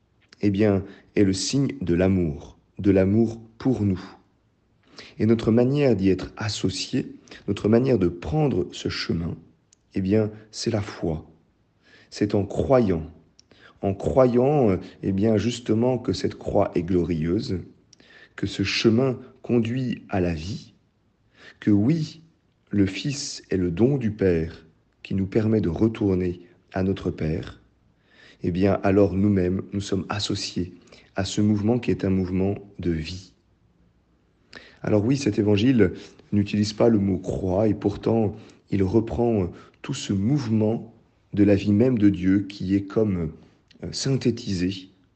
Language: French